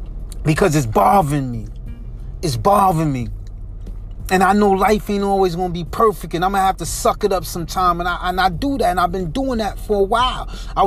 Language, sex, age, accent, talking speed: English, male, 30-49, American, 210 wpm